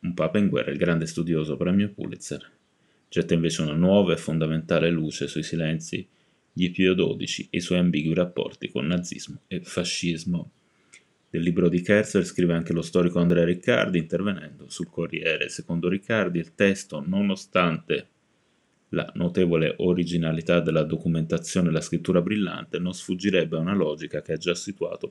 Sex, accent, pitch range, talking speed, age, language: male, native, 80-95 Hz, 155 wpm, 30-49, Italian